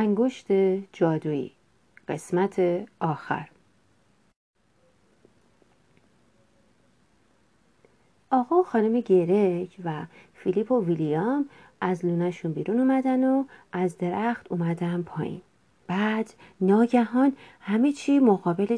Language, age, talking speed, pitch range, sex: Persian, 40-59, 85 wpm, 180-250 Hz, female